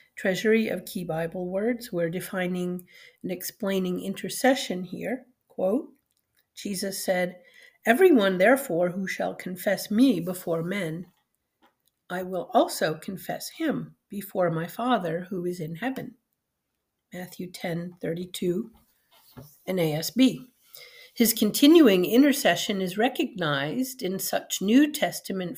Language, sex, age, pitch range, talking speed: English, female, 50-69, 180-240 Hz, 115 wpm